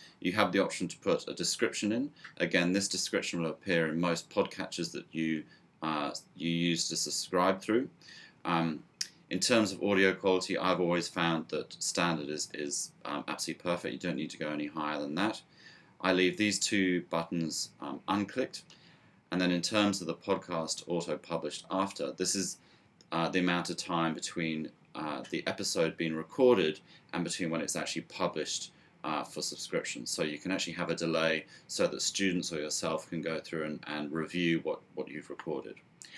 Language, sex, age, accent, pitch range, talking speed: English, male, 30-49, British, 80-95 Hz, 180 wpm